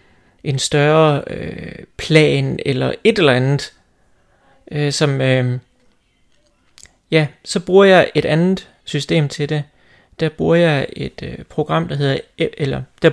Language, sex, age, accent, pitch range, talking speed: Danish, male, 30-49, native, 145-180 Hz, 120 wpm